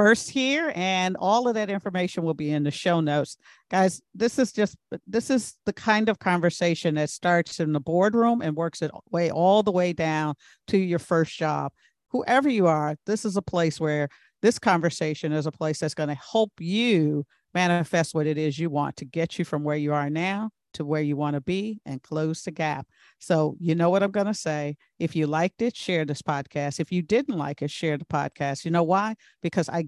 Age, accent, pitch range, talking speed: 50-69, American, 155-200 Hz, 220 wpm